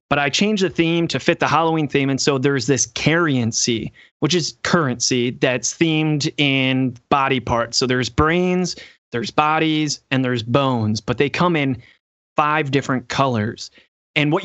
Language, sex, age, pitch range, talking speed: English, male, 20-39, 135-180 Hz, 165 wpm